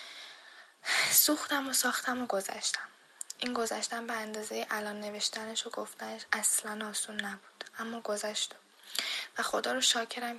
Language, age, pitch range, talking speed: English, 10-29, 210-240 Hz, 125 wpm